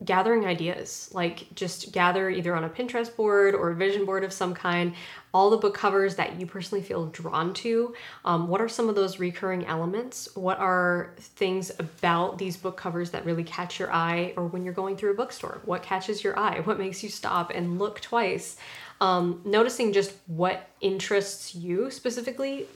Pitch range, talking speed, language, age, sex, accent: 175-200 Hz, 190 wpm, English, 20-39, female, American